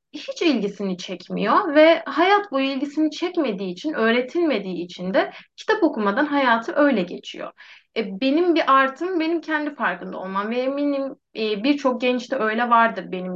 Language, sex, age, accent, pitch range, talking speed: Turkish, female, 20-39, native, 205-270 Hz, 150 wpm